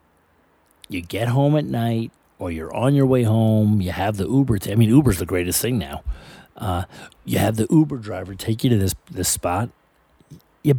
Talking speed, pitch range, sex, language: 200 wpm, 90-125 Hz, male, English